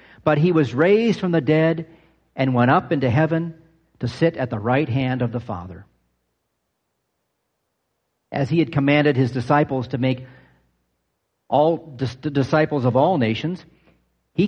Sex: male